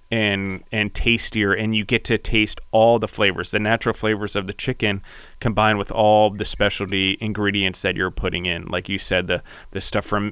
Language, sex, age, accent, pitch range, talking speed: English, male, 30-49, American, 95-110 Hz, 200 wpm